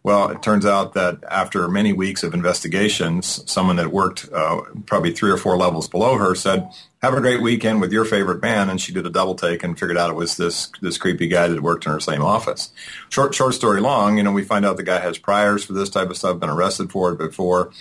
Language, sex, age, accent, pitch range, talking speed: English, male, 40-59, American, 90-110 Hz, 250 wpm